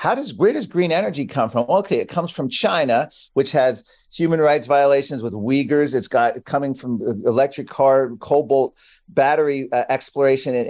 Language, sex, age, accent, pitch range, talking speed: English, male, 40-59, American, 120-155 Hz, 175 wpm